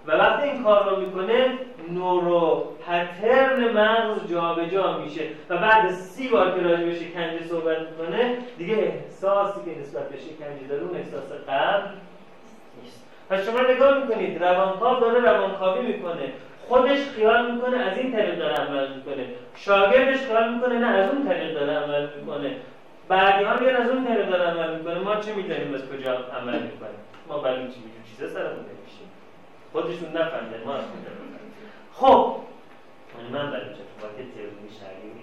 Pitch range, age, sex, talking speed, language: 155-230 Hz, 30-49, male, 150 wpm, Persian